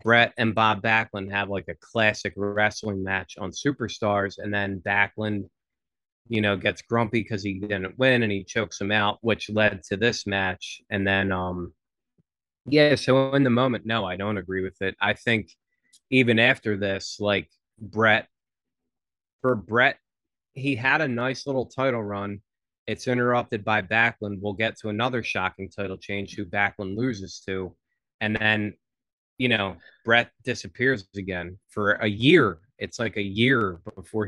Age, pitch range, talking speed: 30-49, 100-120 Hz, 165 wpm